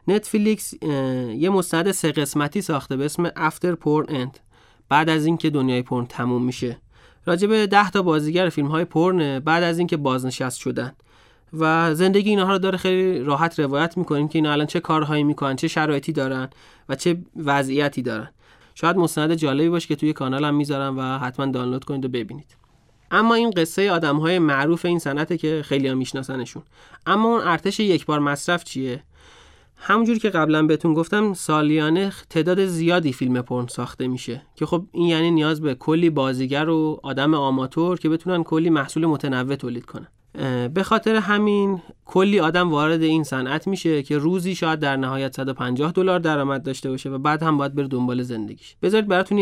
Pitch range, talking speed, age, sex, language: 135-175 Hz, 170 wpm, 30-49, male, Persian